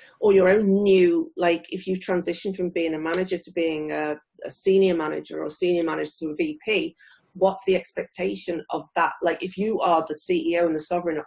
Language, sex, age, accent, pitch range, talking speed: English, female, 40-59, British, 170-215 Hz, 200 wpm